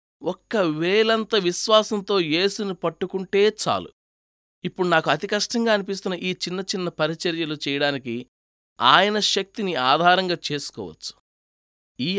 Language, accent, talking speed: Telugu, native, 100 wpm